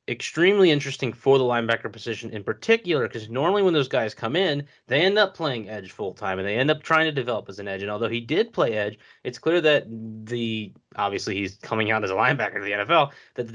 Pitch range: 110-130 Hz